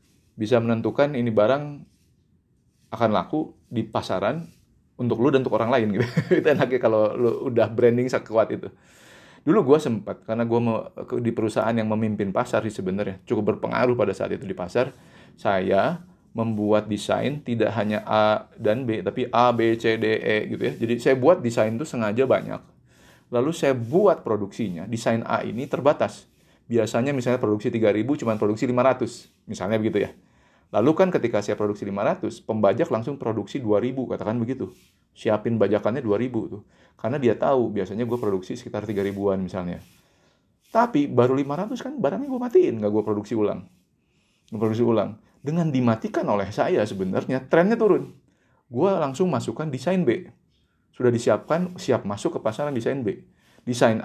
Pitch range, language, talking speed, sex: 105-135 Hz, Indonesian, 160 wpm, male